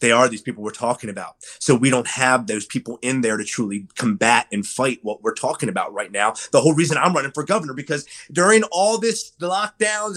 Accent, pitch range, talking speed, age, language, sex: American, 145-205 Hz, 225 wpm, 30-49, English, male